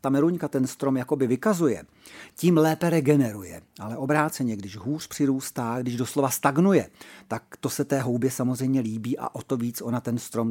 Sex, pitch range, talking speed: male, 125-160 Hz, 175 wpm